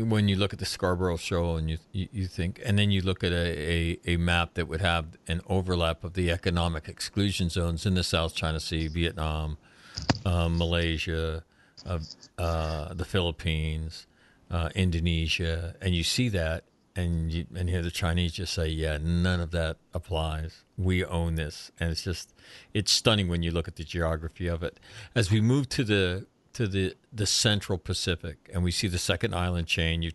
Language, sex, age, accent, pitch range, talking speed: English, male, 50-69, American, 85-100 Hz, 190 wpm